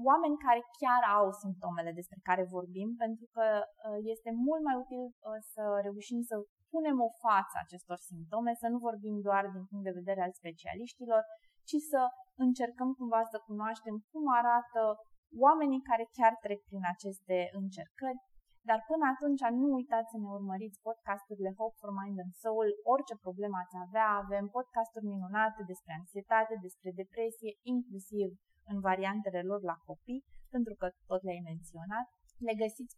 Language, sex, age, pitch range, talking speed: Romanian, female, 20-39, 195-235 Hz, 155 wpm